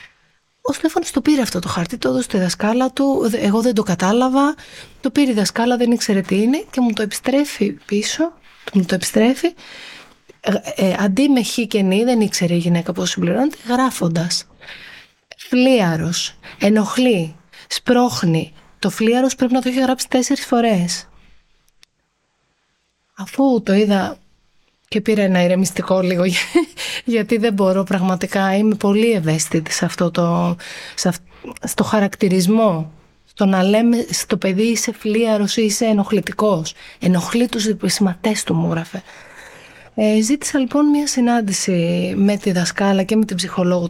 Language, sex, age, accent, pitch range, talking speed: Greek, female, 30-49, native, 185-250 Hz, 145 wpm